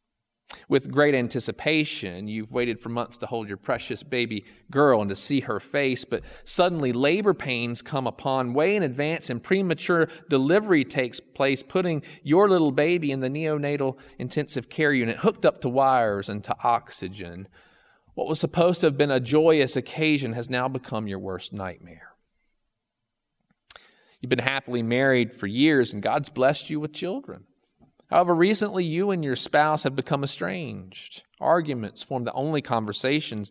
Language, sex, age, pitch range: English, male, 40-59, 115-150 Hz